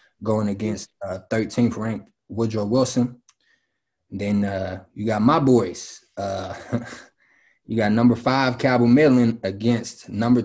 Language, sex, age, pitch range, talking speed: English, male, 20-39, 100-115 Hz, 120 wpm